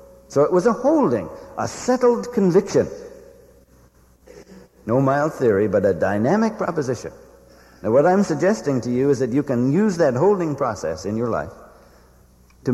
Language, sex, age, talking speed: English, male, 60-79, 155 wpm